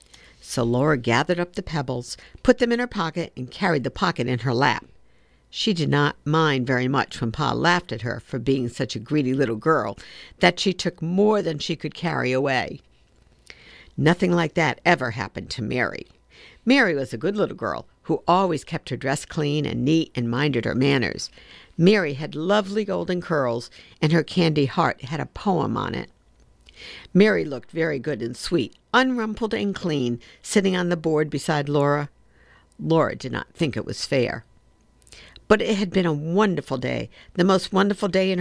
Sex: female